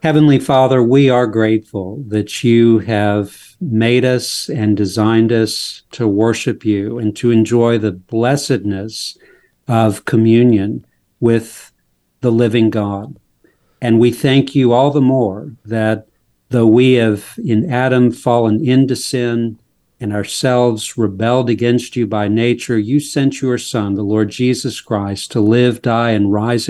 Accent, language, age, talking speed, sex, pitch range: American, English, 50-69, 140 wpm, male, 110-130 Hz